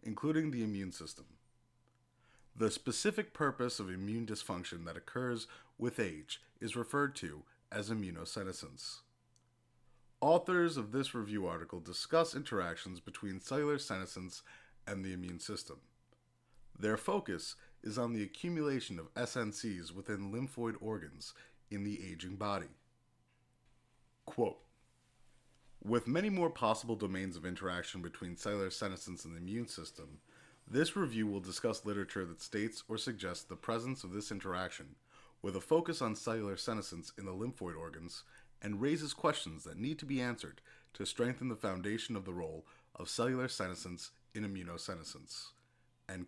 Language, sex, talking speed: English, male, 140 wpm